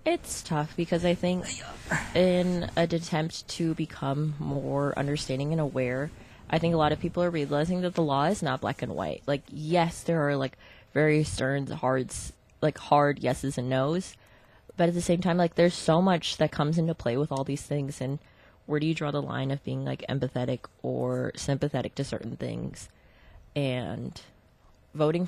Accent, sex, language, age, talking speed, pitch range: American, female, English, 20-39, 185 wpm, 135-165 Hz